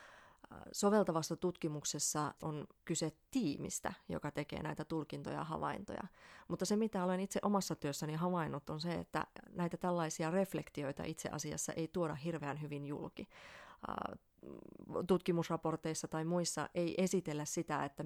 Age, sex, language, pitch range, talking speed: 30-49, female, Finnish, 150-175 Hz, 130 wpm